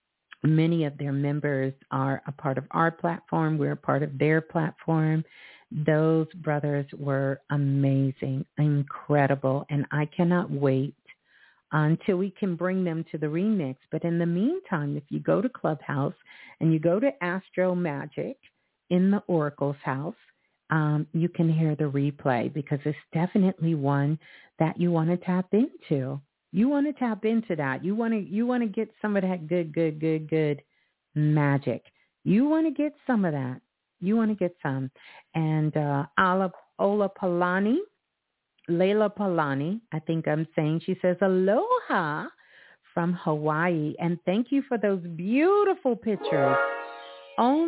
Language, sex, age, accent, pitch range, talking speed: English, female, 50-69, American, 145-195 Hz, 155 wpm